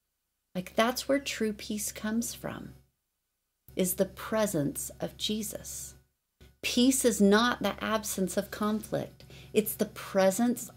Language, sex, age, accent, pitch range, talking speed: English, female, 40-59, American, 180-215 Hz, 125 wpm